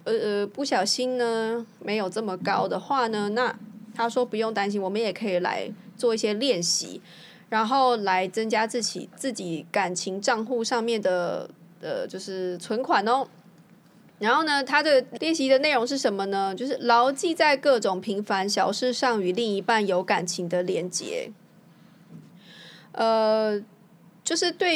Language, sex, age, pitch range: Chinese, female, 20-39, 195-260 Hz